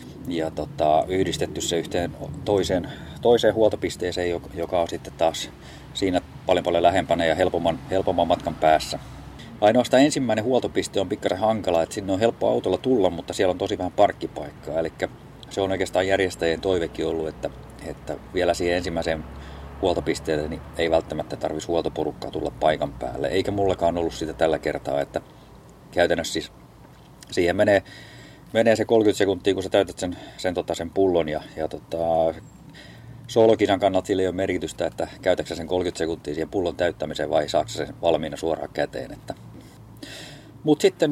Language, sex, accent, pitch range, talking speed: Finnish, male, native, 80-105 Hz, 155 wpm